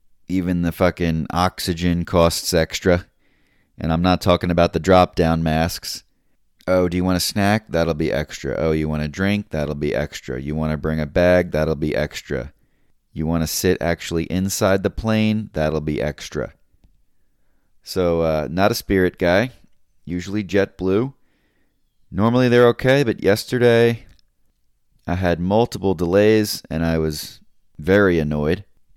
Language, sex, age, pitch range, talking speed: English, male, 30-49, 80-95 Hz, 155 wpm